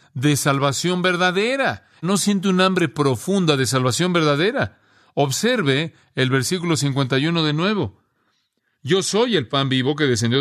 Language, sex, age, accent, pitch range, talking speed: Spanish, male, 40-59, Mexican, 135-180 Hz, 140 wpm